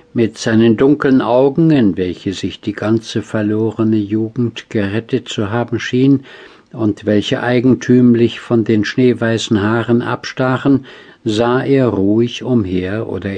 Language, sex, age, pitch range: German, male, 60-79, 100-125 Hz